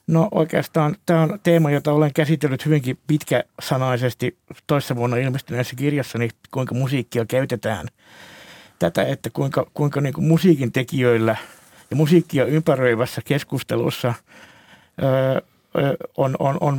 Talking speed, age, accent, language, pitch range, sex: 120 wpm, 60-79, native, Finnish, 120-150 Hz, male